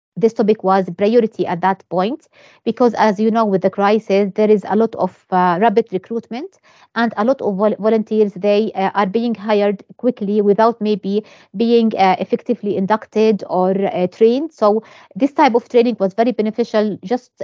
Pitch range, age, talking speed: 195-230 Hz, 20-39, 175 wpm